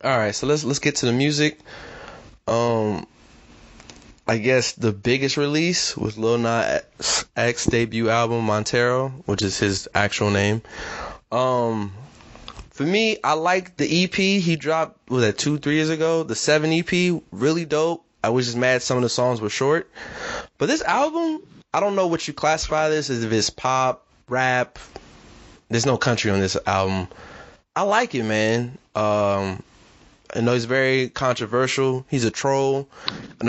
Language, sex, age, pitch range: English, male, 20-39, 115-150 Hz